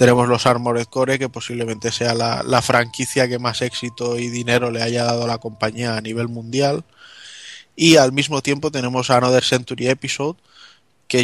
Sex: male